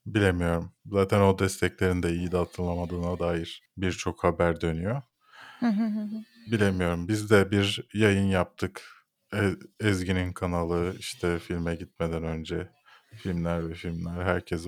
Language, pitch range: Turkish, 90-110 Hz